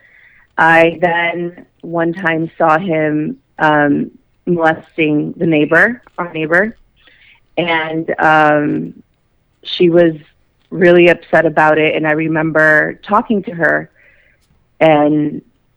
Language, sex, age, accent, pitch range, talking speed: English, female, 30-49, American, 155-180 Hz, 105 wpm